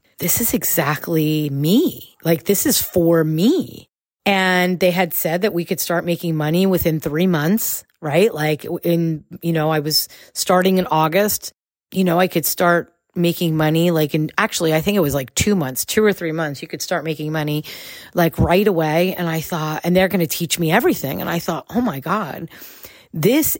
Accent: American